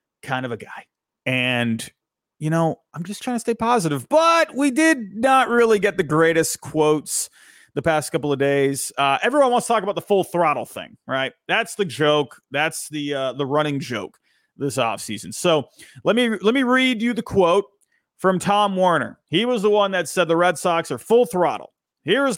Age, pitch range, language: 30-49, 145-210 Hz, English